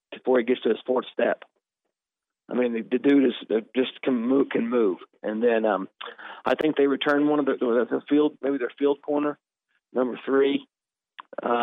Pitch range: 120-140 Hz